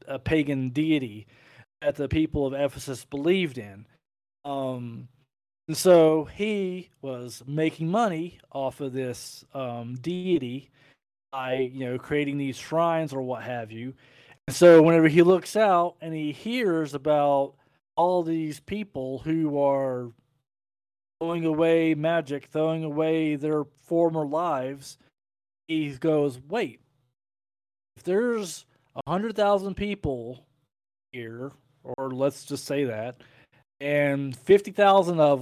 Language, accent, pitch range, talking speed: English, American, 130-165 Hz, 120 wpm